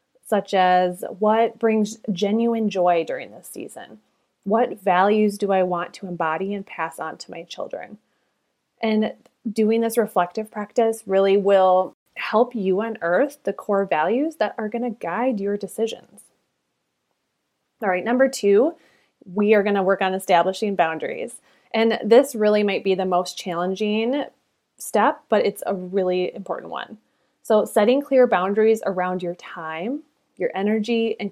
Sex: female